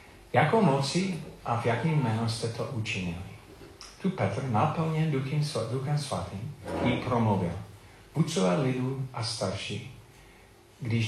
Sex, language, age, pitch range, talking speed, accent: male, Czech, 40-59, 105-145 Hz, 115 wpm, native